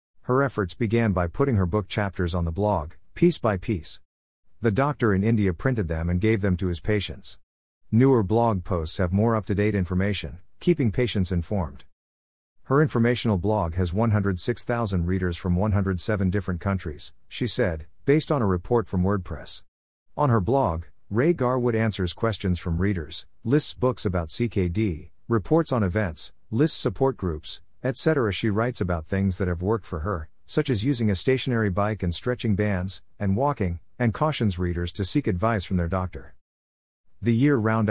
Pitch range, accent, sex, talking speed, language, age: 90-115 Hz, American, male, 165 wpm, English, 50-69